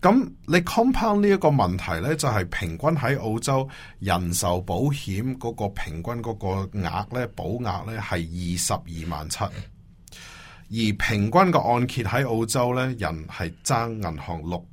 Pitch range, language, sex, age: 85-120 Hz, Chinese, male, 30-49